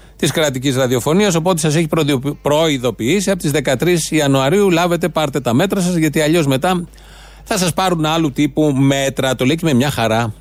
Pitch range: 125-165 Hz